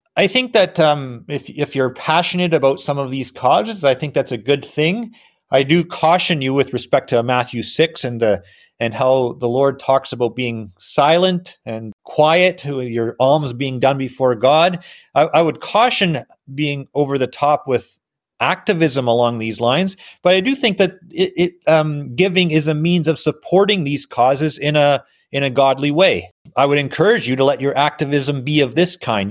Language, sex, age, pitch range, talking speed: English, male, 30-49, 125-155 Hz, 190 wpm